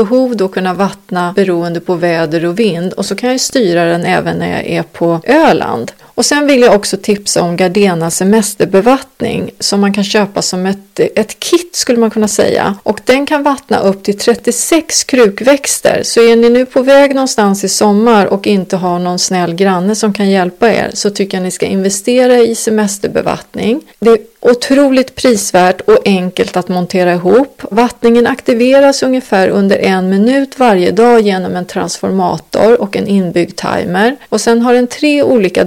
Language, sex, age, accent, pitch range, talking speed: English, female, 30-49, Swedish, 190-240 Hz, 180 wpm